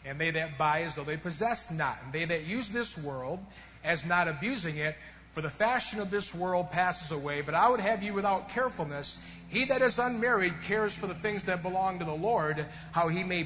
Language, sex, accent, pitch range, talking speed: English, male, American, 155-195 Hz, 225 wpm